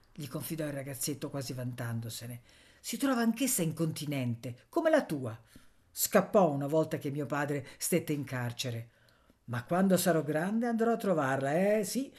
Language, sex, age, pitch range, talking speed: Italian, female, 50-69, 135-190 Hz, 160 wpm